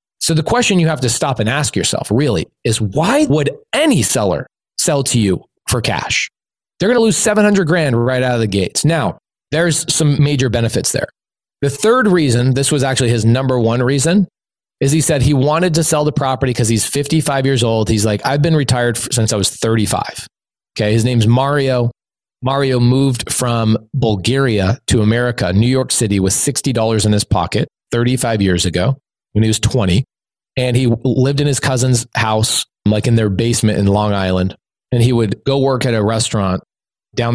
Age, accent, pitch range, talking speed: 30-49, American, 110-140 Hz, 190 wpm